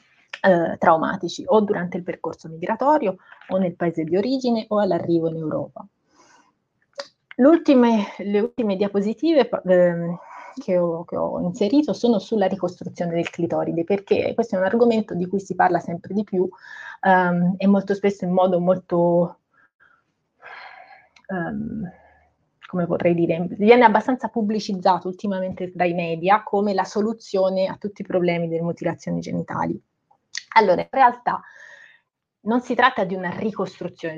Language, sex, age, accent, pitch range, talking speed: Italian, female, 30-49, native, 175-220 Hz, 130 wpm